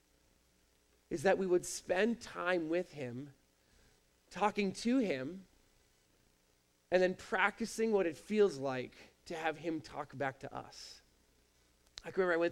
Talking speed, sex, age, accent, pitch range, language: 145 wpm, male, 20-39, American, 130-185 Hz, English